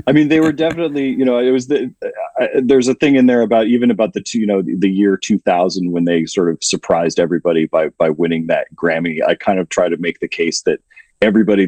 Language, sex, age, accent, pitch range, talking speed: English, male, 30-49, American, 95-135 Hz, 240 wpm